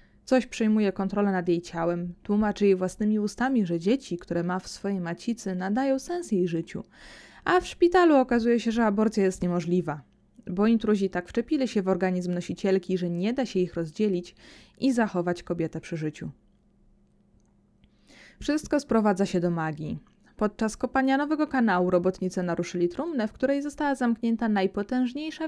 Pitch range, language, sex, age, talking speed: 180-250 Hz, Polish, female, 20-39, 155 wpm